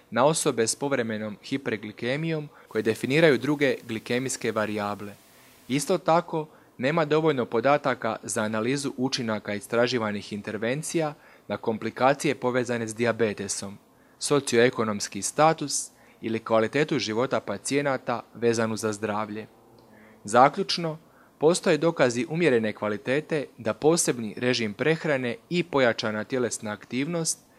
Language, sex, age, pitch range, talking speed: Croatian, male, 30-49, 110-145 Hz, 100 wpm